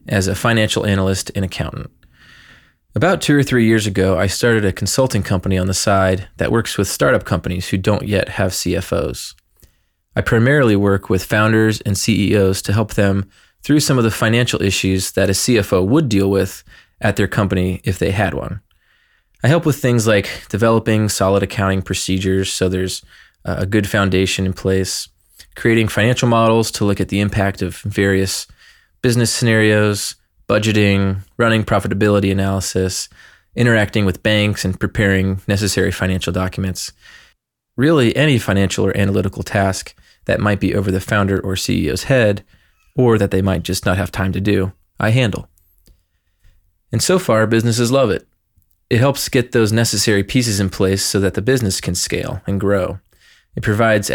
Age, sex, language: 20-39, male, English